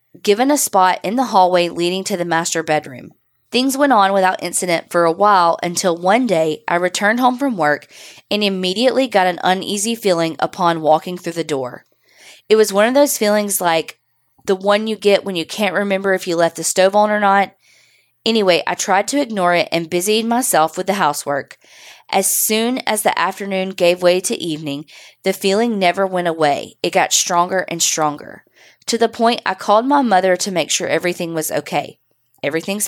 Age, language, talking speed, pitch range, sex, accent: 20-39, English, 195 wpm, 165-205 Hz, female, American